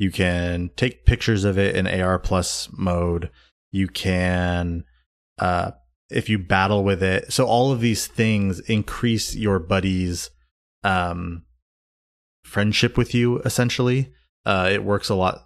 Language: English